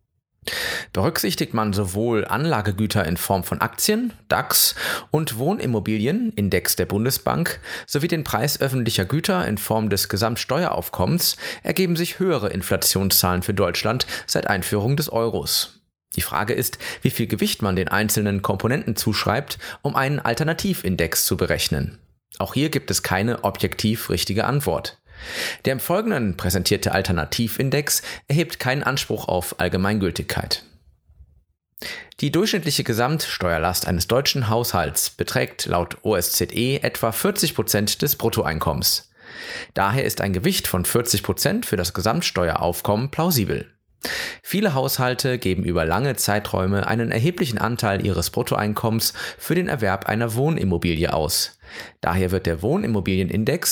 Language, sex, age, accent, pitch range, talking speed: German, male, 30-49, German, 95-140 Hz, 125 wpm